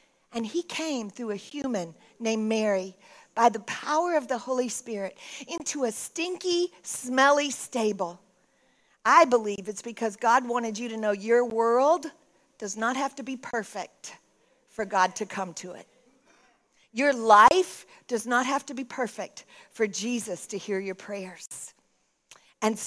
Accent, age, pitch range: American, 50-69, 230-320 Hz